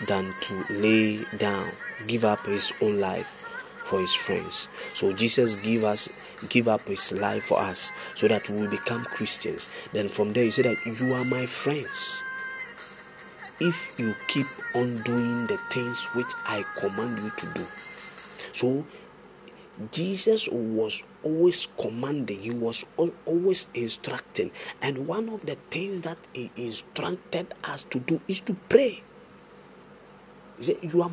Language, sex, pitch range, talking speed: English, male, 125-200 Hz, 150 wpm